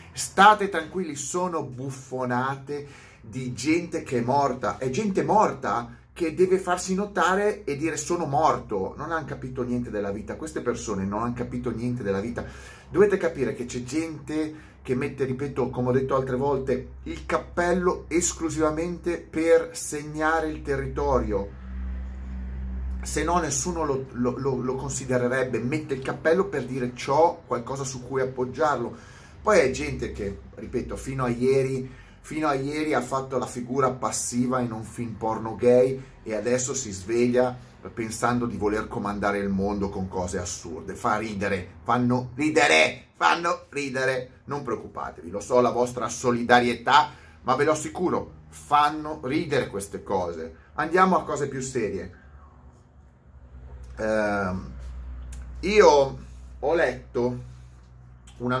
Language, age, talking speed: Italian, 30-49, 140 wpm